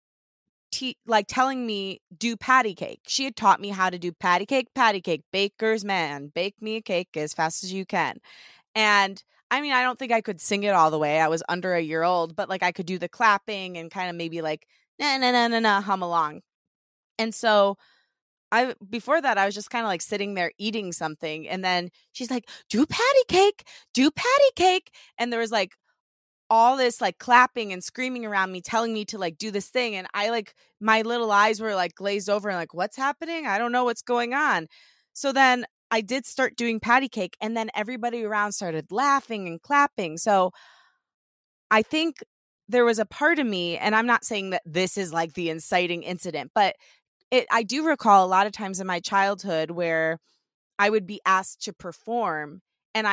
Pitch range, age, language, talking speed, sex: 180-235 Hz, 20-39, English, 210 wpm, female